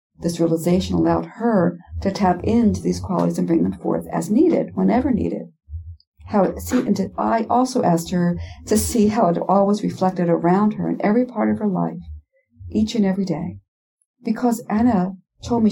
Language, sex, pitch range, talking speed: English, female, 170-225 Hz, 175 wpm